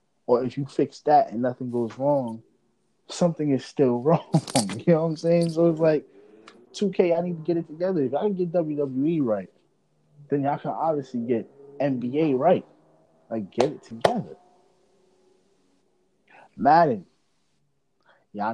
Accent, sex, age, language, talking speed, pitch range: American, male, 20-39, English, 150 wpm, 105-145 Hz